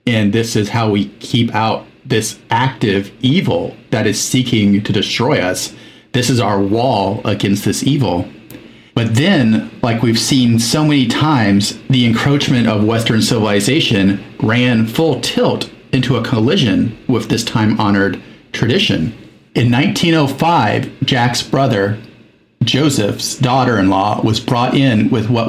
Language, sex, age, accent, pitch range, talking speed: English, male, 40-59, American, 110-130 Hz, 135 wpm